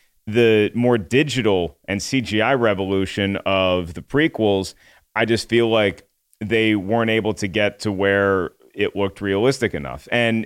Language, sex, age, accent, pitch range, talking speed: English, male, 30-49, American, 105-125 Hz, 145 wpm